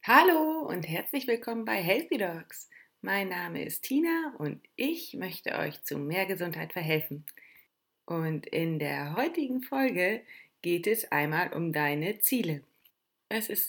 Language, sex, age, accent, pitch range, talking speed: German, female, 30-49, German, 175-230 Hz, 140 wpm